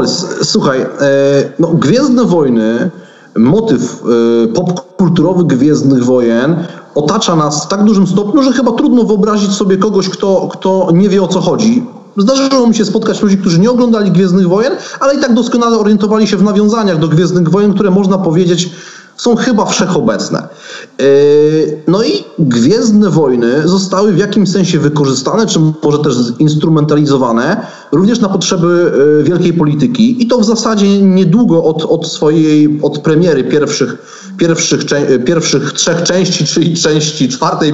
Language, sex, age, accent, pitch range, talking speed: Polish, male, 30-49, native, 150-200 Hz, 150 wpm